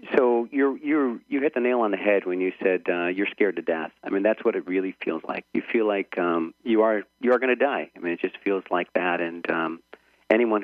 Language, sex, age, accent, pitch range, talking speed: English, male, 40-59, American, 85-110 Hz, 265 wpm